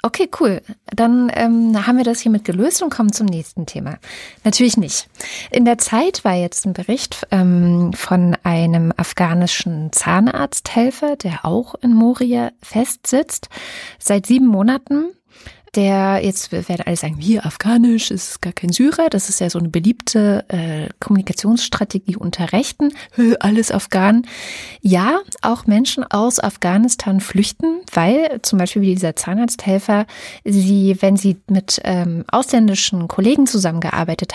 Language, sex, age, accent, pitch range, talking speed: German, female, 30-49, German, 180-235 Hz, 140 wpm